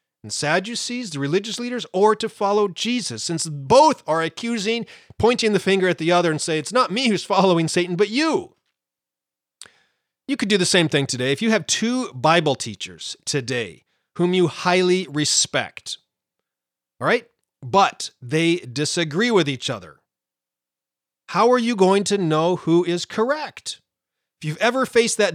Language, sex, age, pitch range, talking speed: English, male, 30-49, 145-210 Hz, 165 wpm